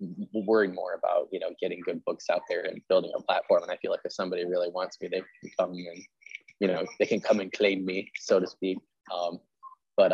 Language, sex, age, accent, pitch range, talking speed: English, male, 20-39, American, 90-100 Hz, 235 wpm